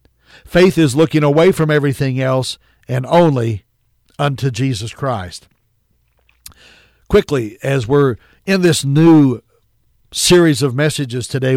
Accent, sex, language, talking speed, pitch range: American, male, English, 115 wpm, 130-155 Hz